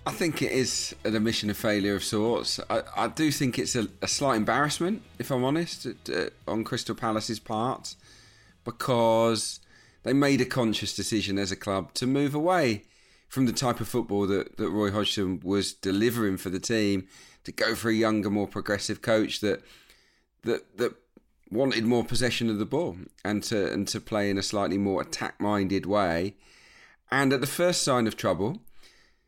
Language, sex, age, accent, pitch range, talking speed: English, male, 40-59, British, 105-135 Hz, 180 wpm